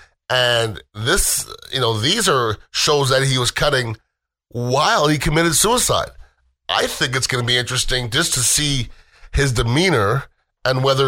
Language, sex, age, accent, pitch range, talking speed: English, male, 30-49, American, 100-120 Hz, 155 wpm